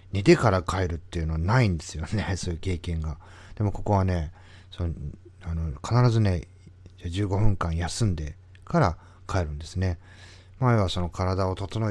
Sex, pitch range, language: male, 85-100 Hz, Japanese